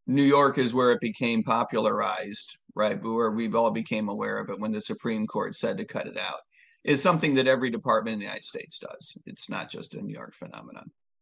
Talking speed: 220 wpm